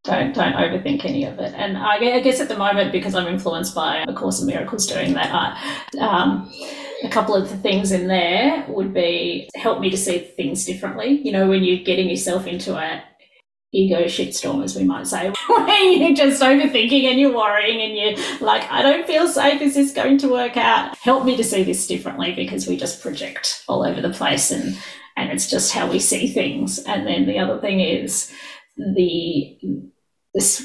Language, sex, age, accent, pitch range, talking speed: English, female, 30-49, Australian, 185-250 Hz, 200 wpm